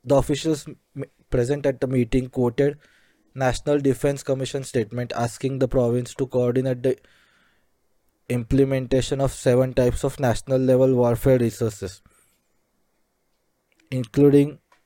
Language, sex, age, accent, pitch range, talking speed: English, male, 20-39, Indian, 120-140 Hz, 105 wpm